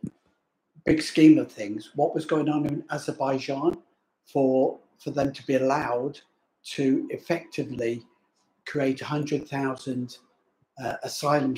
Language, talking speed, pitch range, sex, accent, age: English, 115 wpm, 125-150 Hz, male, British, 60-79